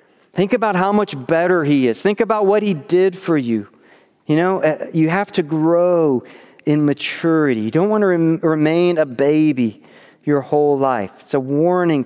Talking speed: 175 wpm